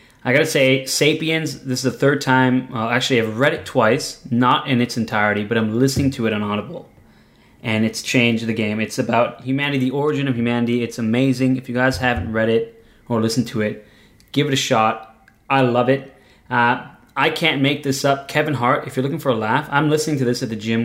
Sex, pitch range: male, 115-135 Hz